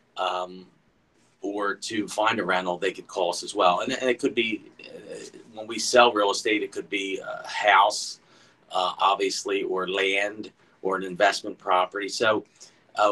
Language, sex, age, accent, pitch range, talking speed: English, male, 40-59, American, 95-120 Hz, 175 wpm